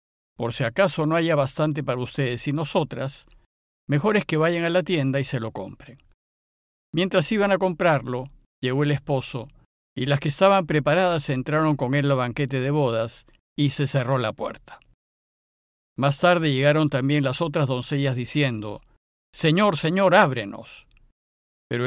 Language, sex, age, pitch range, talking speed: Spanish, male, 50-69, 125-170 Hz, 155 wpm